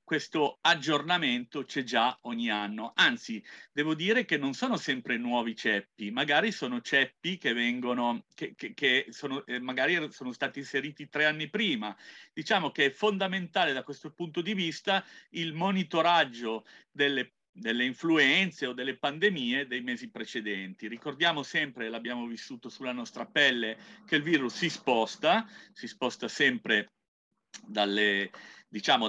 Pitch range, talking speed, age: 120-175 Hz, 140 wpm, 40-59